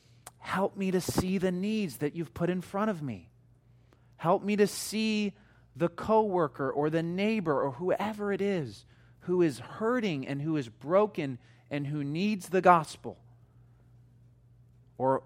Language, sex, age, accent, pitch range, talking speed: English, male, 30-49, American, 120-170 Hz, 155 wpm